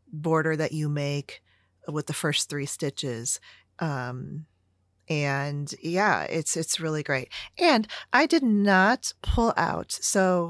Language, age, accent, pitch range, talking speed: English, 40-59, American, 155-220 Hz, 130 wpm